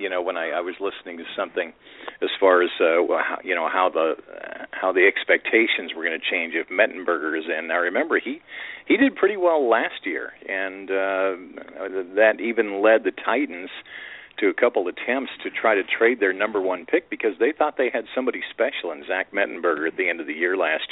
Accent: American